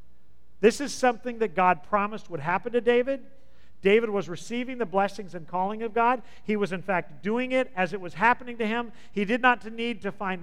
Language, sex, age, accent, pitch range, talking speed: English, male, 50-69, American, 175-235 Hz, 215 wpm